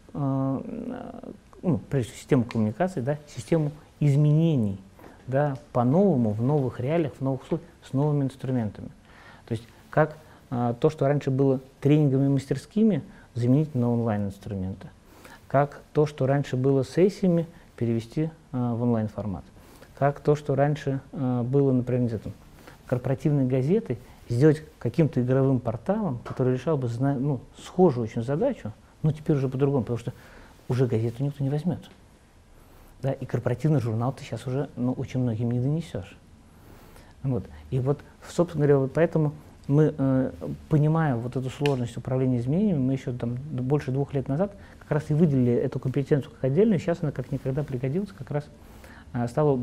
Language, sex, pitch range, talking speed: Russian, male, 120-150 Hz, 140 wpm